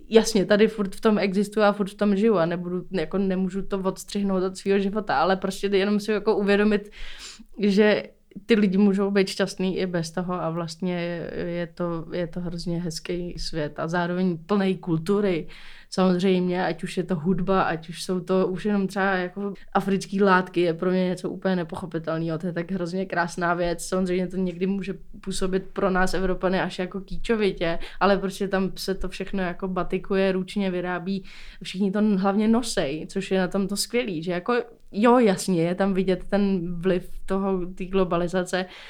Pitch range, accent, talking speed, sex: 180-200 Hz, native, 185 wpm, female